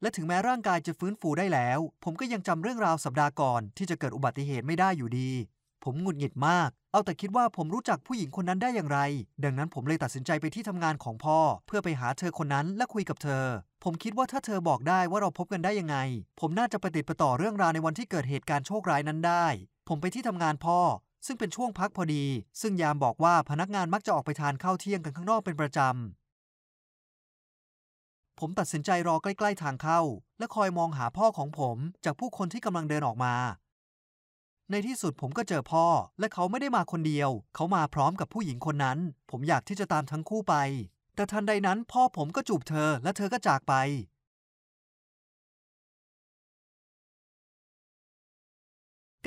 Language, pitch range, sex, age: Thai, 140-195 Hz, male, 20-39